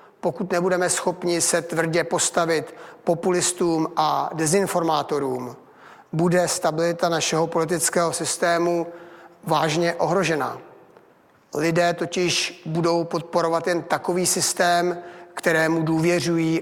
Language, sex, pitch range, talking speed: Czech, male, 160-175 Hz, 90 wpm